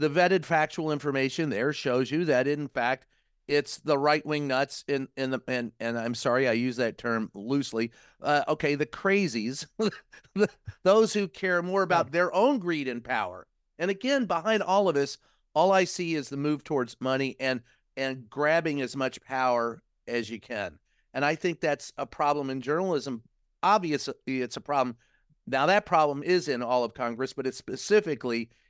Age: 40-59